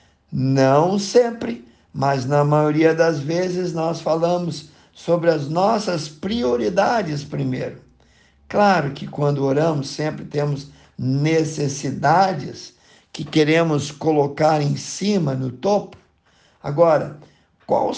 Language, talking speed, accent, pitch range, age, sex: Portuguese, 100 wpm, Brazilian, 145-180 Hz, 50-69, male